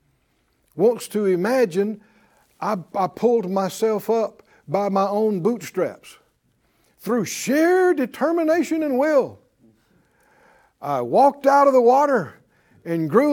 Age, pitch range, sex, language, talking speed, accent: 60-79, 170-260 Hz, male, English, 115 wpm, American